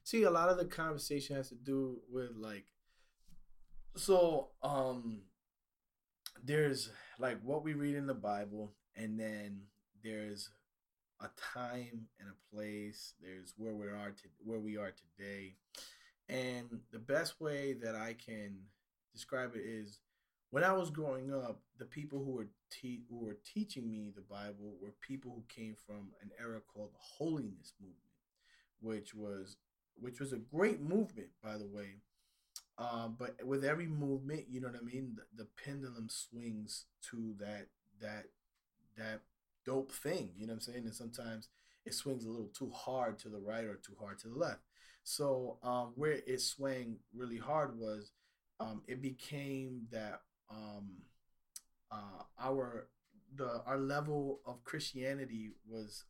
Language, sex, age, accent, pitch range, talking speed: English, male, 20-39, American, 105-135 Hz, 160 wpm